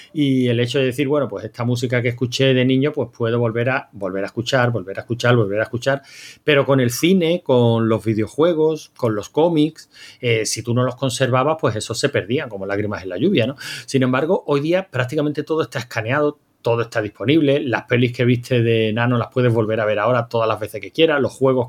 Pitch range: 115-140 Hz